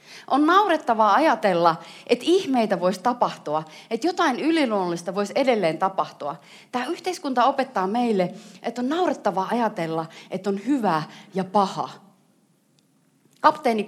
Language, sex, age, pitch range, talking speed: Finnish, female, 30-49, 175-250 Hz, 115 wpm